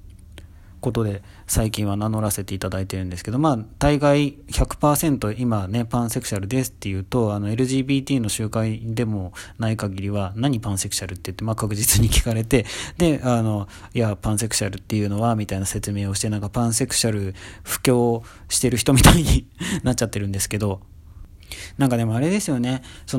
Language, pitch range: Japanese, 100-125 Hz